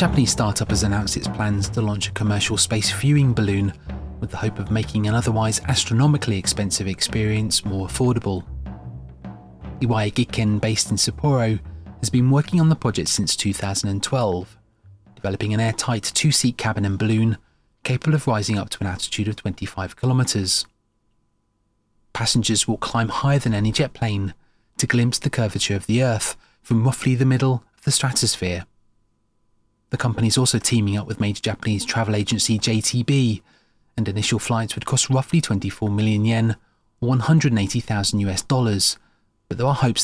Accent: British